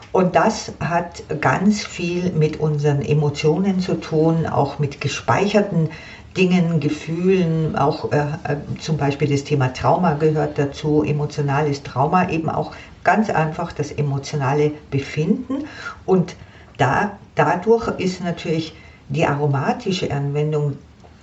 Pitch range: 140-165 Hz